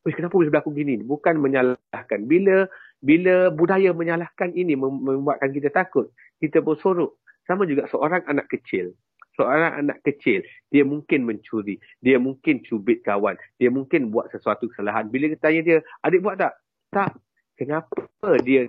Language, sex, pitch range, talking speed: Malay, male, 125-170 Hz, 150 wpm